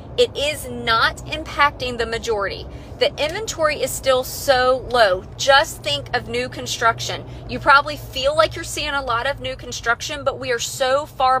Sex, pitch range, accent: female, 225-280 Hz, American